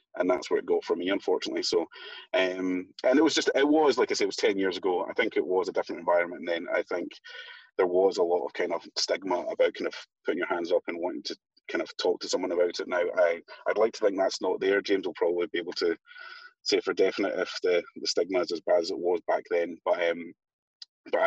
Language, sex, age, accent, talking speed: English, male, 30-49, British, 265 wpm